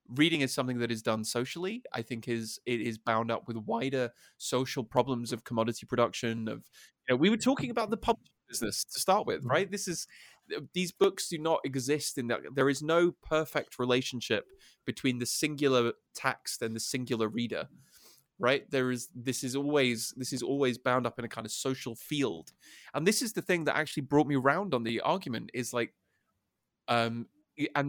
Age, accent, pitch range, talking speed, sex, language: 20-39, British, 120-155 Hz, 195 wpm, male, English